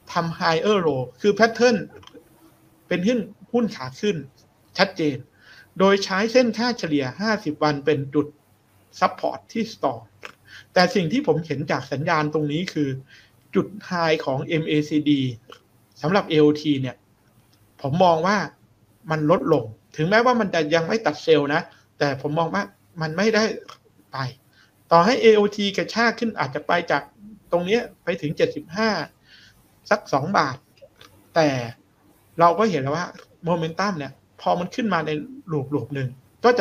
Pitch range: 145-200 Hz